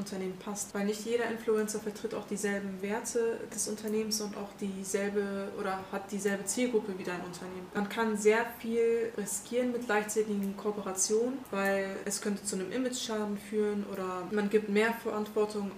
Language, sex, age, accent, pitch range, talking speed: German, female, 20-39, German, 195-215 Hz, 160 wpm